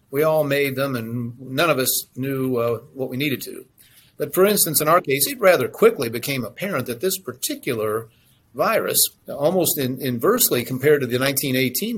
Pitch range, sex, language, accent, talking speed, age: 125-160 Hz, male, English, American, 180 wpm, 50-69